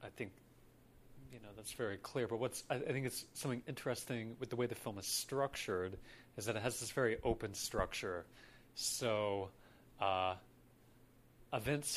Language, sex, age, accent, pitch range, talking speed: English, male, 30-49, American, 105-125 Hz, 160 wpm